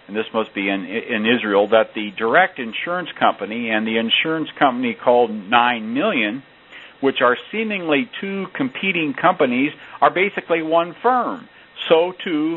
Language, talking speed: English, 150 wpm